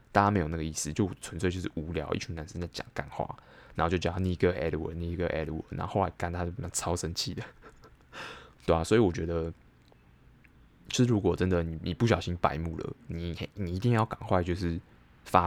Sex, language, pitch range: male, Chinese, 80-95 Hz